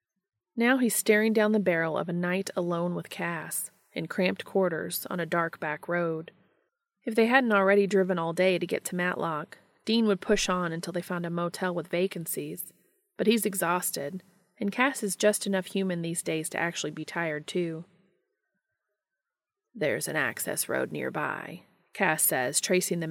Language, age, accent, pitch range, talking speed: English, 30-49, American, 165-200 Hz, 175 wpm